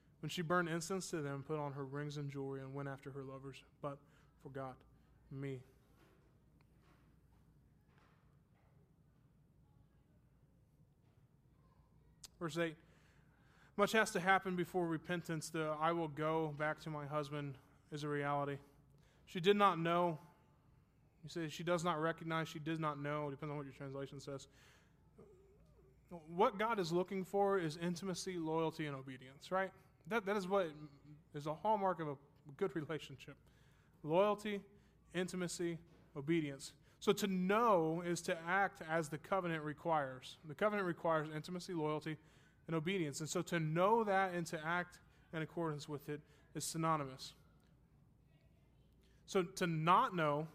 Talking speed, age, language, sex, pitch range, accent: 140 wpm, 20-39, English, male, 145-175 Hz, American